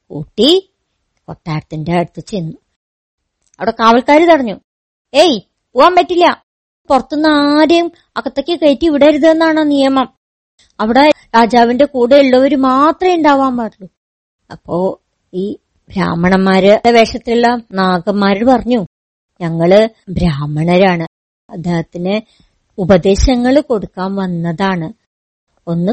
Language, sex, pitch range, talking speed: Malayalam, male, 175-280 Hz, 80 wpm